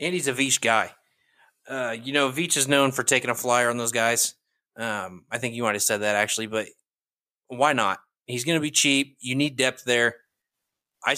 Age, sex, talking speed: 20-39, male, 215 wpm